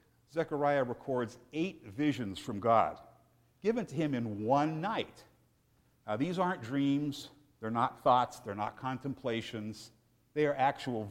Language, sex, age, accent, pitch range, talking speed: English, male, 60-79, American, 115-155 Hz, 135 wpm